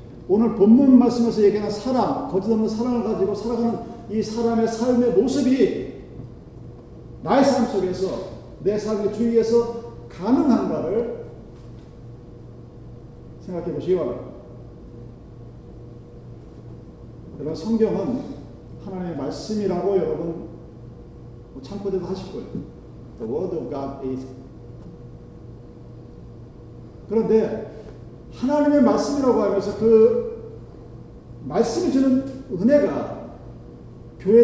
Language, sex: Korean, male